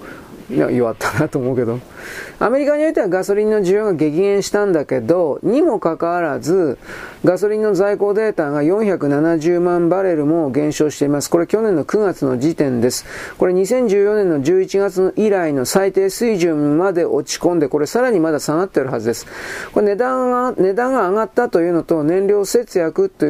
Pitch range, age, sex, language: 150-210 Hz, 40-59, male, Japanese